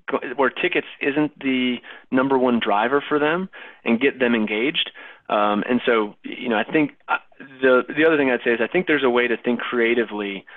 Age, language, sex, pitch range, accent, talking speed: 30-49, English, male, 105-125 Hz, American, 200 wpm